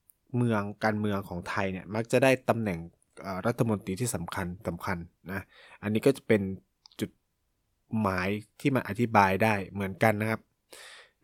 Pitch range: 95-120 Hz